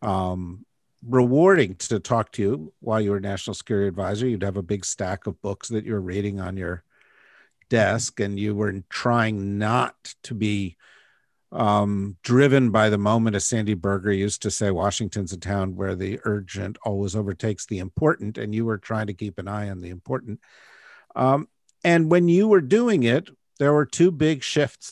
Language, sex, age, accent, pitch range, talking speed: English, male, 50-69, American, 100-120 Hz, 185 wpm